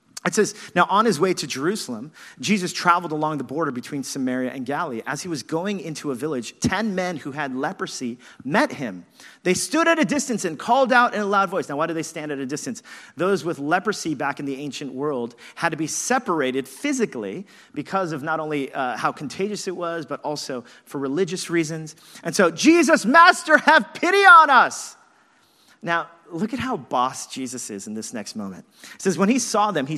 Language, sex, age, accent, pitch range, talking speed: English, male, 40-59, American, 145-215 Hz, 210 wpm